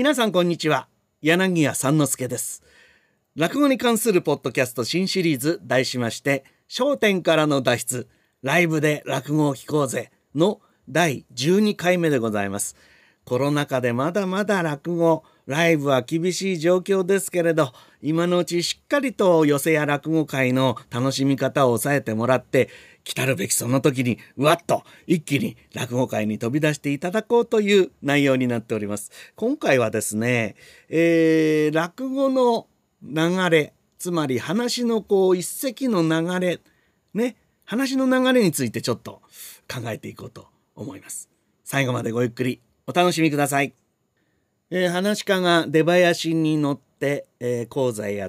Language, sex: Japanese, male